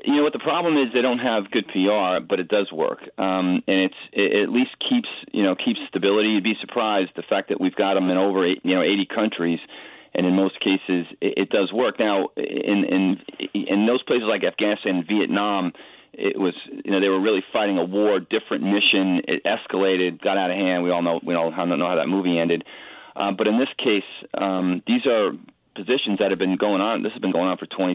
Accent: American